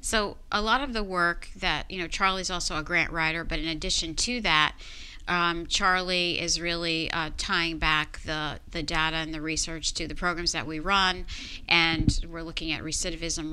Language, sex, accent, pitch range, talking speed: English, female, American, 155-175 Hz, 190 wpm